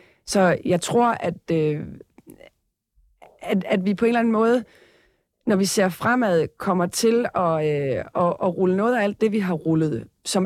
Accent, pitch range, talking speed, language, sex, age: native, 165-205 Hz, 185 wpm, Danish, female, 30-49